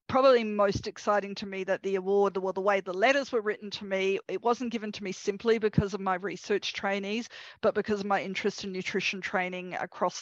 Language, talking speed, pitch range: English, 215 wpm, 185-210 Hz